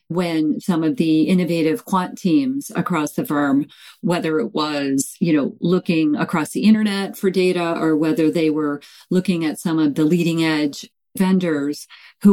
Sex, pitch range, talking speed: female, 155-190 Hz, 165 wpm